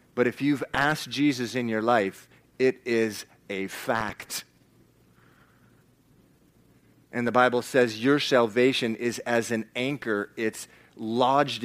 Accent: American